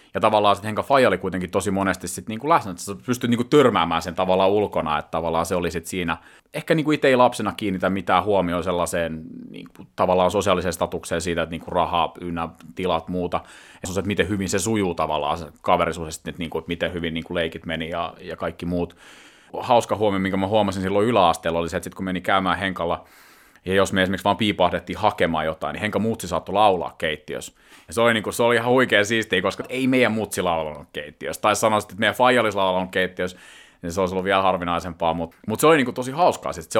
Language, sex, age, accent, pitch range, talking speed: Finnish, male, 30-49, native, 85-110 Hz, 220 wpm